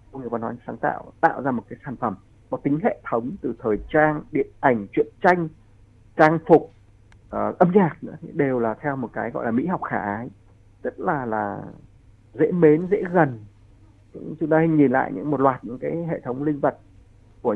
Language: Vietnamese